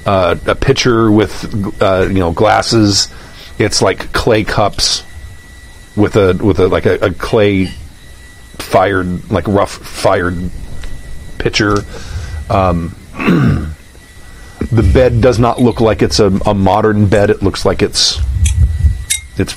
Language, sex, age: English, male, 40-59